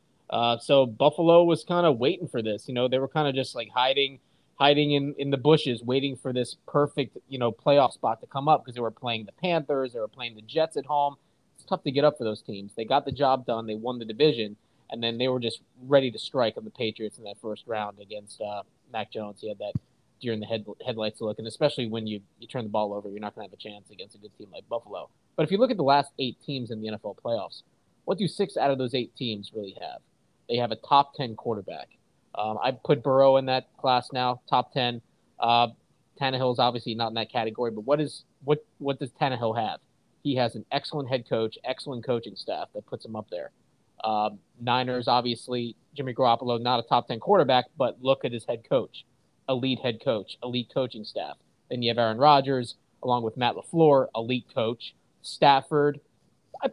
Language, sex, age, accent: English, male, 20-39, American